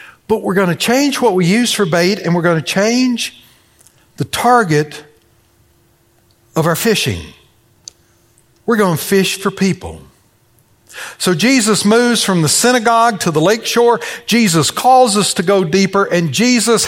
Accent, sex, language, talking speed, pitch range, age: American, male, English, 155 wpm, 165-215 Hz, 60-79